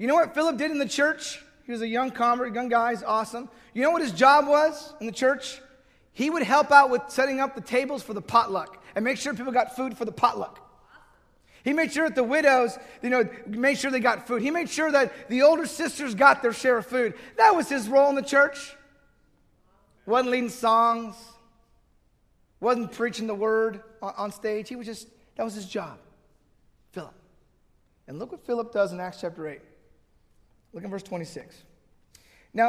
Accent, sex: American, male